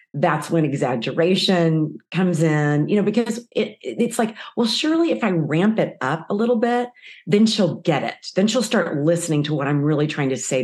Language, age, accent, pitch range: English, 40-59, American, 145-200 Hz